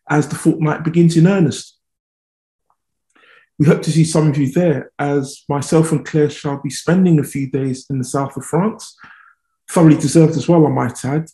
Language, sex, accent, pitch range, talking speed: English, male, British, 135-170 Hz, 190 wpm